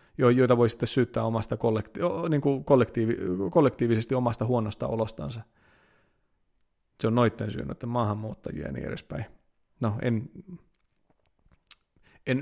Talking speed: 95 wpm